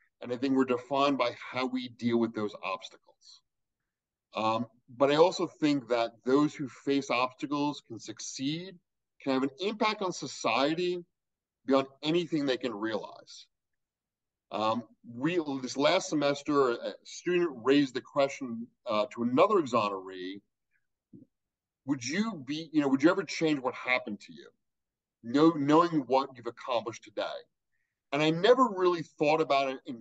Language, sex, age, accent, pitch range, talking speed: English, male, 40-59, American, 125-165 Hz, 150 wpm